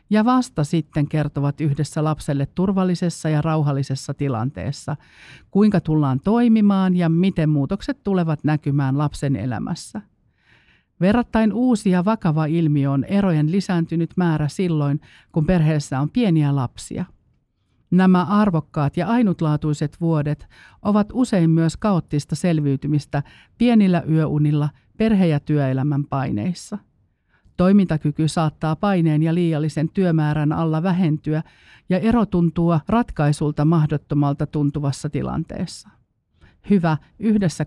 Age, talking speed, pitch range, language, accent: 50-69, 105 wpm, 145-185 Hz, Finnish, native